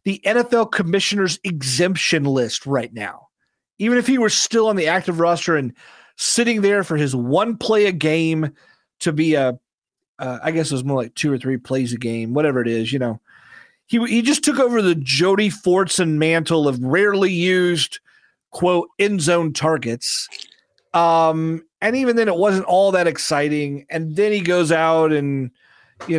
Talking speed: 180 wpm